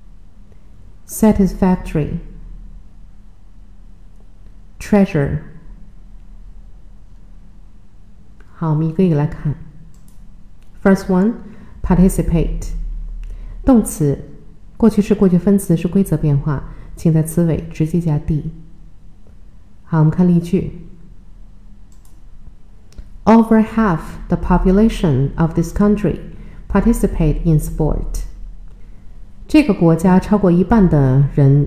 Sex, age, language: female, 50-69, Chinese